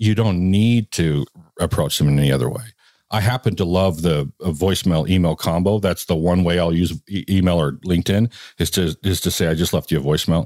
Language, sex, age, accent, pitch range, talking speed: English, male, 50-69, American, 80-100 Hz, 230 wpm